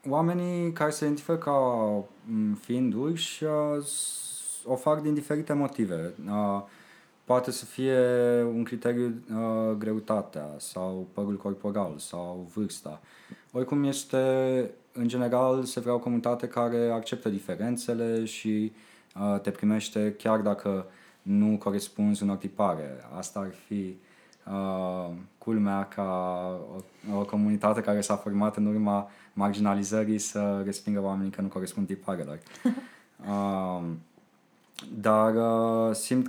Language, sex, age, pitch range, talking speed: Romanian, male, 20-39, 100-120 Hz, 110 wpm